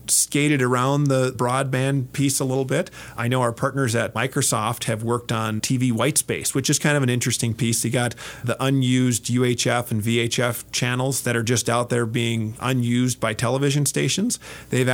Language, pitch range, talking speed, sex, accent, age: English, 115-135 Hz, 180 wpm, male, American, 40-59